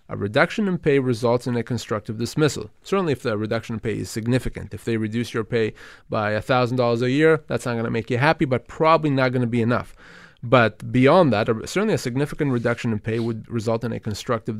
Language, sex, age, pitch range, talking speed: English, male, 30-49, 115-150 Hz, 215 wpm